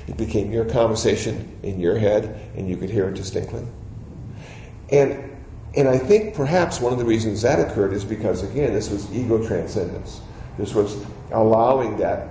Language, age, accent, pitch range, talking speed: English, 50-69, American, 100-115 Hz, 170 wpm